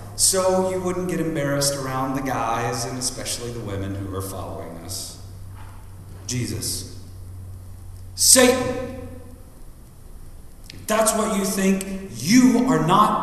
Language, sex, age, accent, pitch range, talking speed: English, male, 50-69, American, 105-175 Hz, 120 wpm